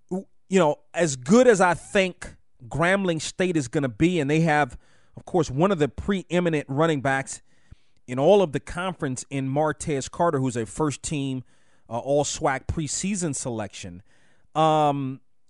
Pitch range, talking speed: 130-175 Hz, 150 wpm